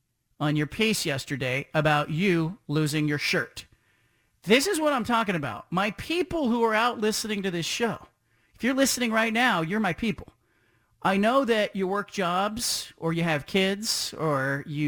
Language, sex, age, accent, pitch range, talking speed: English, male, 40-59, American, 145-200 Hz, 180 wpm